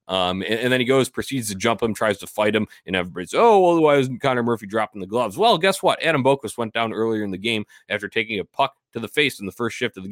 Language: English